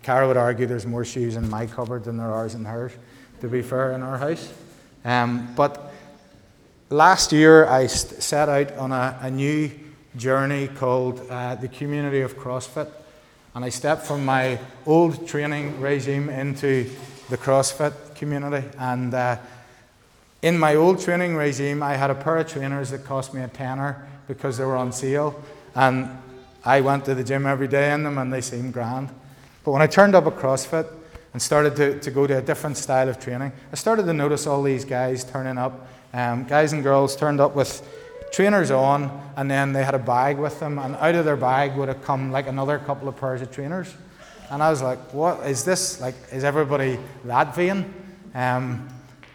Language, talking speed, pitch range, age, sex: English, 195 wpm, 130-150 Hz, 30-49, male